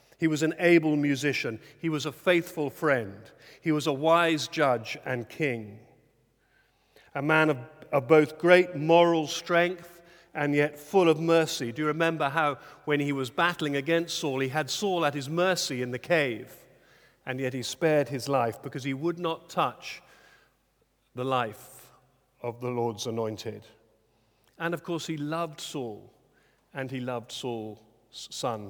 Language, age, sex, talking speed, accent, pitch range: English, 50-69, male, 160 wpm, British, 130-170 Hz